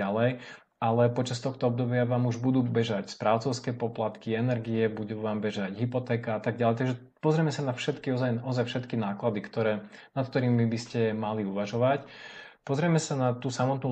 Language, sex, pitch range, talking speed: Slovak, male, 110-125 Hz, 175 wpm